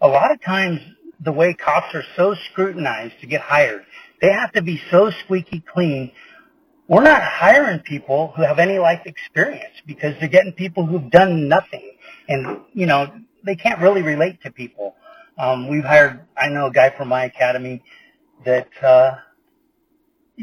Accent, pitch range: American, 130-195 Hz